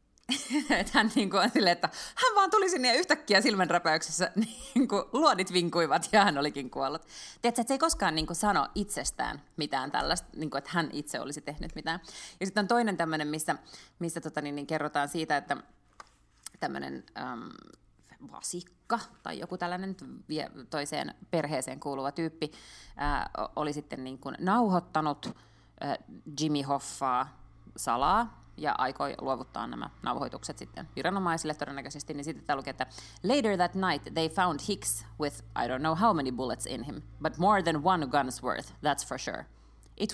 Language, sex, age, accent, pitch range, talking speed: Finnish, female, 30-49, native, 150-210 Hz, 145 wpm